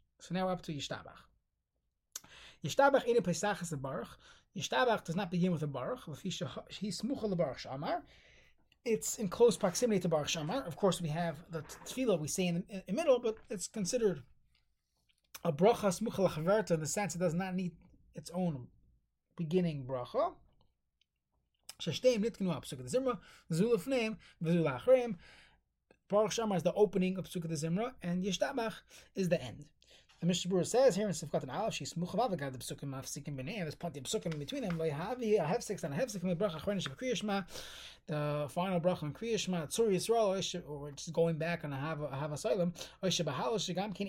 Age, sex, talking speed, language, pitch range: 30-49, male, 135 wpm, English, 160-205 Hz